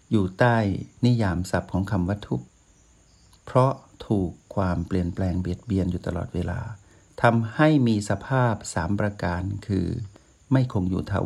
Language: Thai